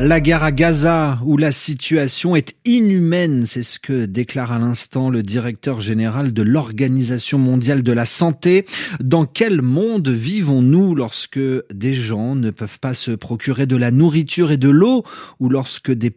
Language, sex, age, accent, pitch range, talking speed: French, male, 30-49, French, 120-165 Hz, 165 wpm